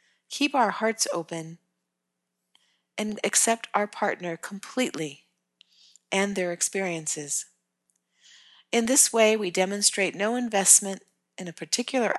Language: English